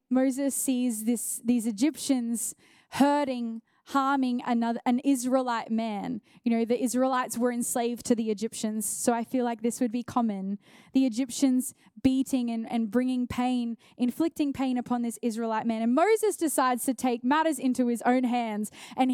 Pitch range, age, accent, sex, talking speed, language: 235-280 Hz, 10-29, Australian, female, 165 wpm, English